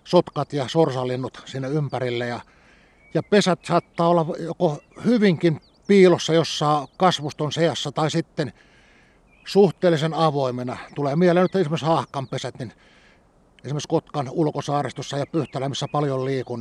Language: Finnish